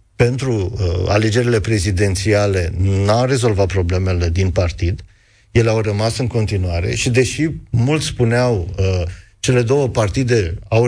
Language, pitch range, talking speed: Romanian, 100-125 Hz, 125 wpm